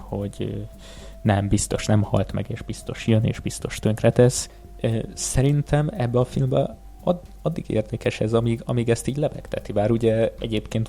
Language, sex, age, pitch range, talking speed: Hungarian, male, 20-39, 100-120 Hz, 150 wpm